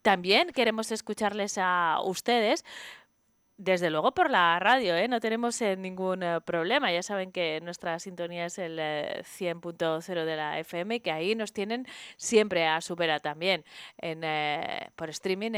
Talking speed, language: 160 wpm, Spanish